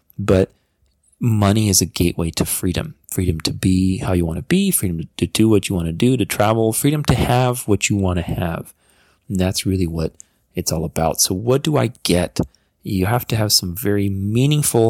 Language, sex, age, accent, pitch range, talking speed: English, male, 30-49, American, 85-115 Hz, 210 wpm